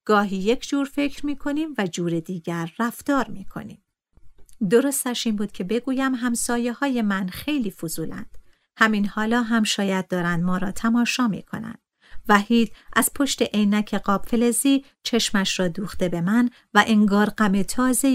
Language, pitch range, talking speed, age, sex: Persian, 175-225 Hz, 150 wpm, 50-69, female